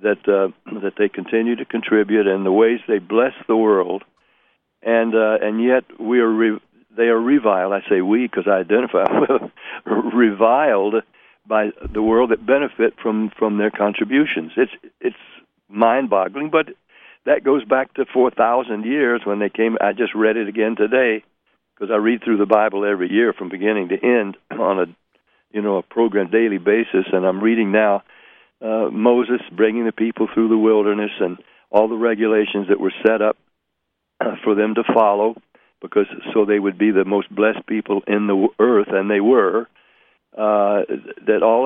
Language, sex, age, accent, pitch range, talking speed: English, male, 60-79, American, 105-115 Hz, 175 wpm